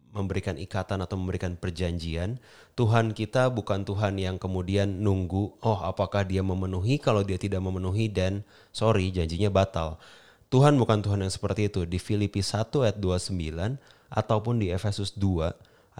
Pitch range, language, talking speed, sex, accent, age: 95-115 Hz, Indonesian, 145 wpm, male, native, 30-49